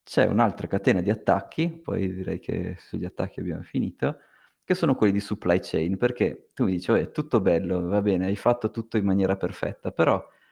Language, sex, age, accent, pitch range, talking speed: Italian, male, 30-49, native, 95-110 Hz, 200 wpm